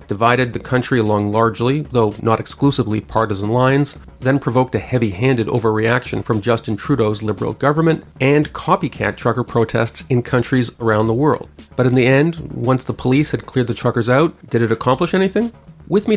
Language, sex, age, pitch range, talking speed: English, male, 40-59, 110-140 Hz, 175 wpm